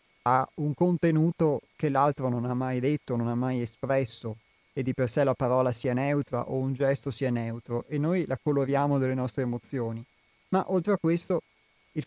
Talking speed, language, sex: 190 wpm, Italian, male